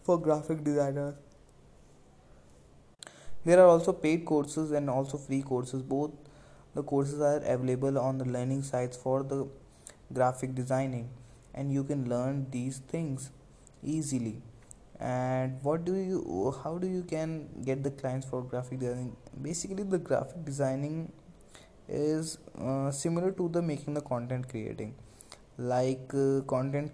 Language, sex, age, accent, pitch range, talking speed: English, male, 20-39, Indian, 130-150 Hz, 140 wpm